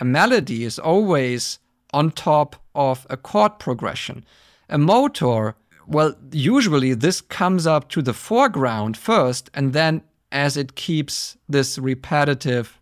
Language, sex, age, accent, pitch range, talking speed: English, male, 50-69, German, 130-175 Hz, 130 wpm